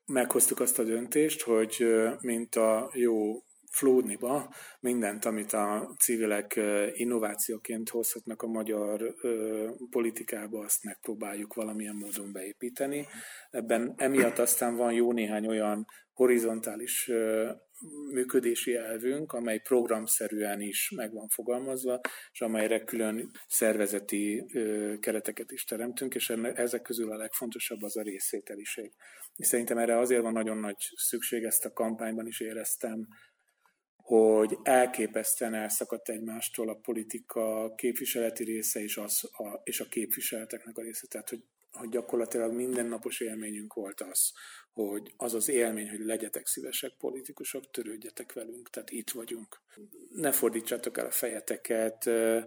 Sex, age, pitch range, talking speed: male, 30-49, 110-120 Hz, 125 wpm